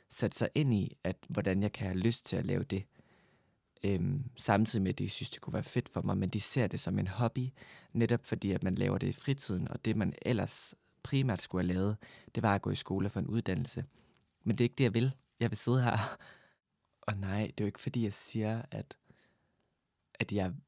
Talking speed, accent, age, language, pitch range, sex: 235 wpm, native, 20-39, Danish, 95-120 Hz, male